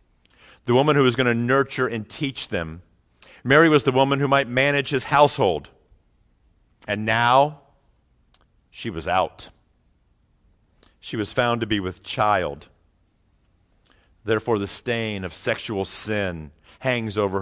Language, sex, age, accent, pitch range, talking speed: English, male, 50-69, American, 90-140 Hz, 135 wpm